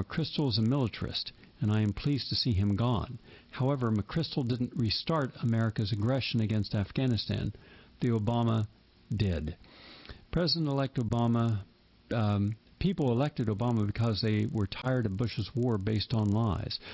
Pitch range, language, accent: 105-125 Hz, English, American